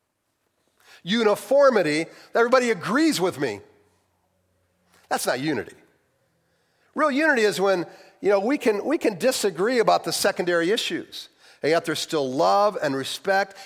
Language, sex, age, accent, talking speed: English, male, 50-69, American, 125 wpm